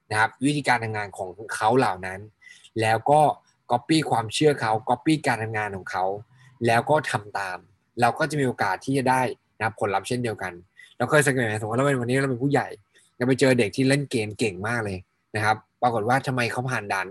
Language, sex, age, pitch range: Thai, male, 20-39, 110-135 Hz